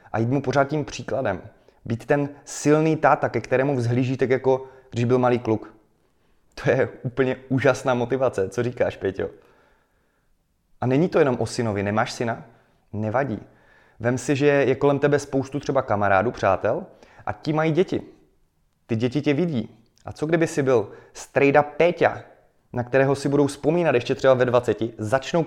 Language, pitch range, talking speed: Czech, 115-145 Hz, 165 wpm